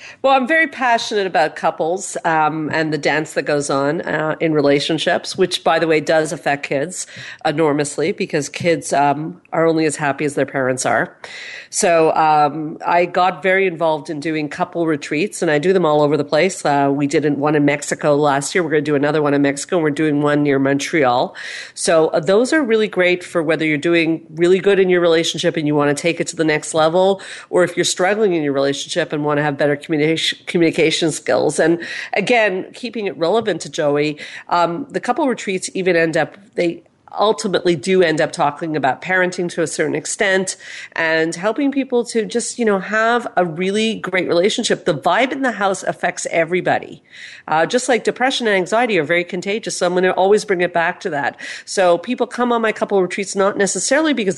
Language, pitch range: English, 155-195 Hz